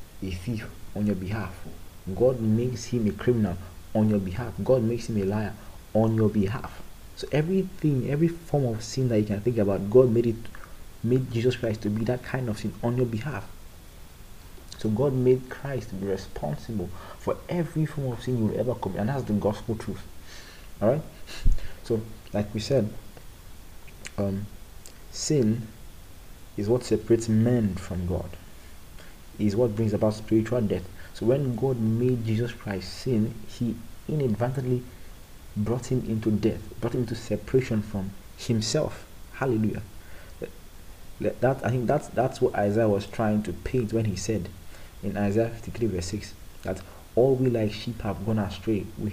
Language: English